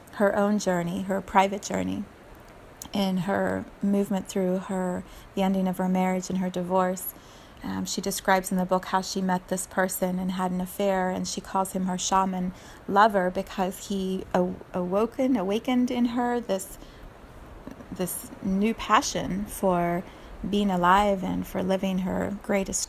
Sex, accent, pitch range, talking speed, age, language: female, American, 185-215 Hz, 155 wpm, 30-49, English